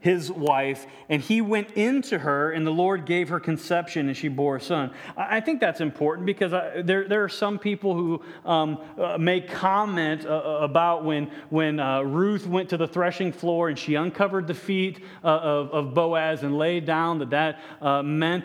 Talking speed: 200 wpm